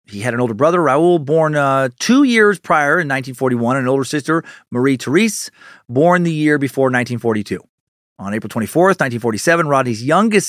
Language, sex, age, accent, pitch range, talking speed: English, male, 40-59, American, 130-170 Hz, 170 wpm